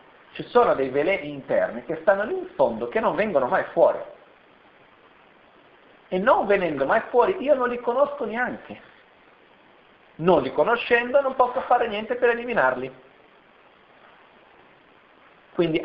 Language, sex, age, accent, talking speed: Italian, male, 40-59, native, 135 wpm